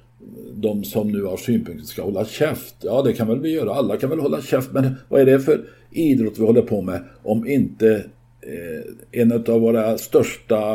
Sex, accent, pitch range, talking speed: male, native, 110-130 Hz, 200 wpm